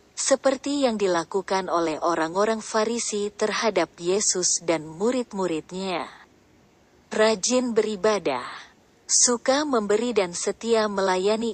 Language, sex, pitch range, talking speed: Indonesian, female, 185-230 Hz, 90 wpm